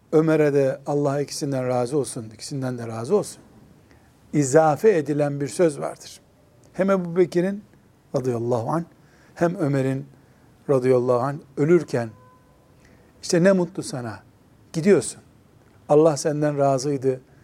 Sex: male